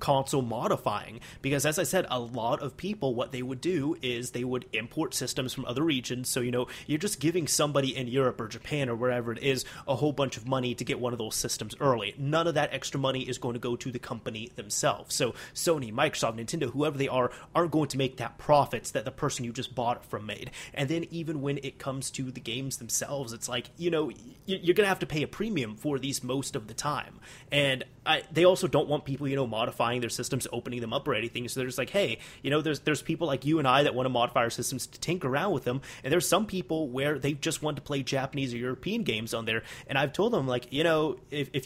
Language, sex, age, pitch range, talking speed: English, male, 30-49, 125-150 Hz, 255 wpm